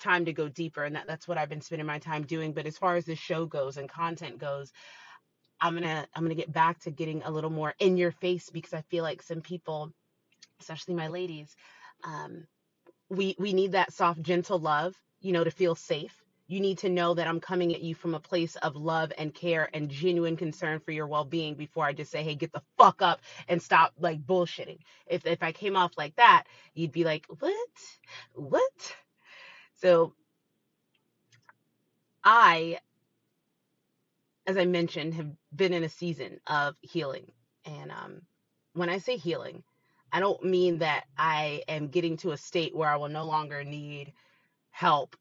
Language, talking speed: English, 190 wpm